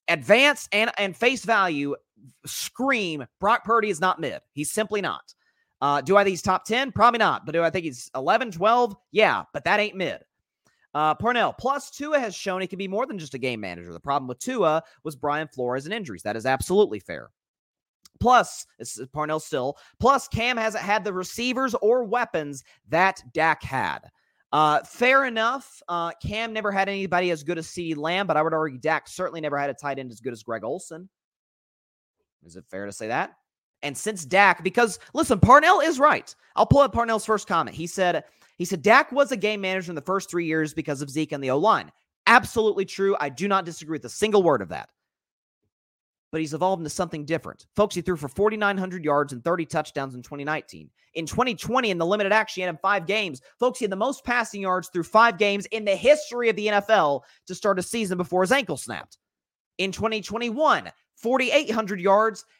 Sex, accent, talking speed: male, American, 205 wpm